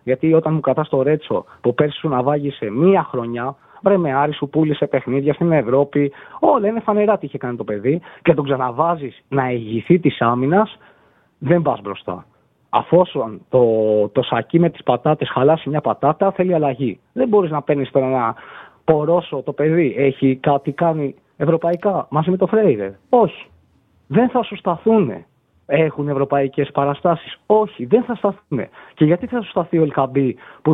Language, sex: Greek, male